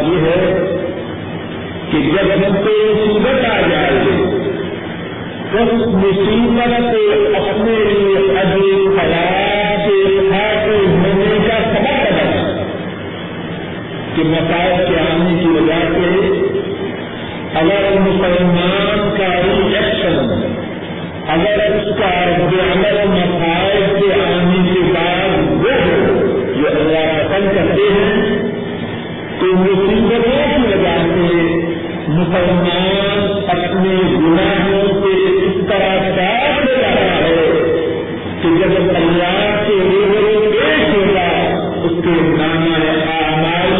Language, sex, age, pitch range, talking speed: Urdu, female, 50-69, 170-205 Hz, 65 wpm